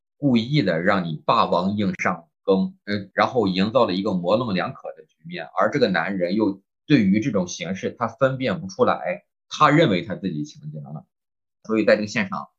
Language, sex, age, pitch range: Chinese, male, 20-39, 100-155 Hz